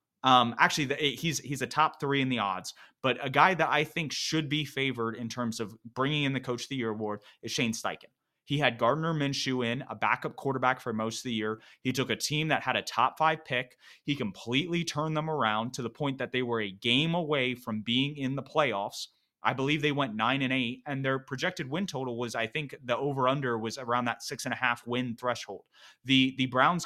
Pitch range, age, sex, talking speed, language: 120-155 Hz, 30-49, male, 235 wpm, English